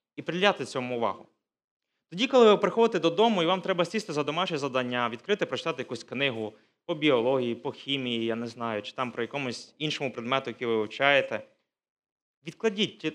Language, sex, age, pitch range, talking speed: Ukrainian, male, 20-39, 120-180 Hz, 170 wpm